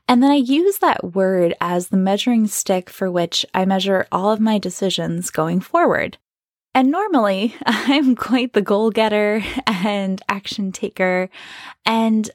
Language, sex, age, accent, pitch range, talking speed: English, female, 10-29, American, 185-250 Hz, 150 wpm